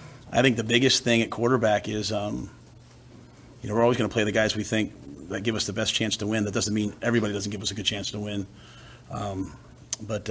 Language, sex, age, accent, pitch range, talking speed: English, male, 40-59, American, 105-120 Hz, 245 wpm